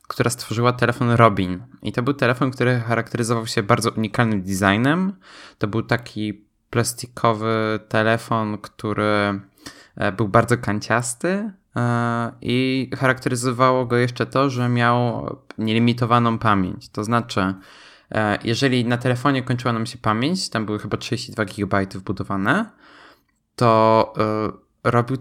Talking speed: 115 wpm